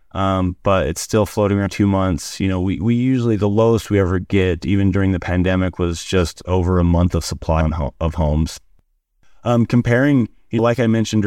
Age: 30-49